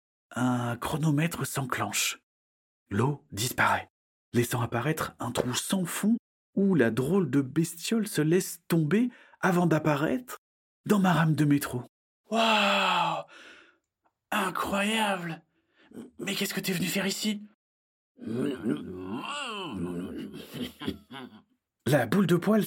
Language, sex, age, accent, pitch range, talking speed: French, male, 40-59, French, 125-200 Hz, 105 wpm